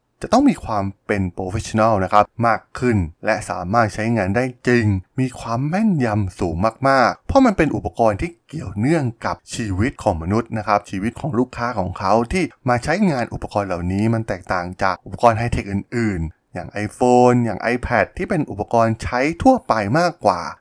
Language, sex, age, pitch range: Thai, male, 20-39, 95-125 Hz